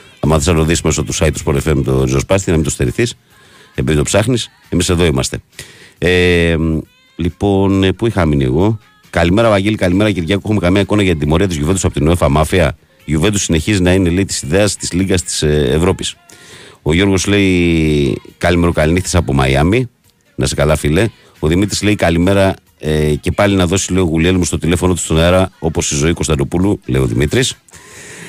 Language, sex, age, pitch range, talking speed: Greek, male, 50-69, 80-95 Hz, 140 wpm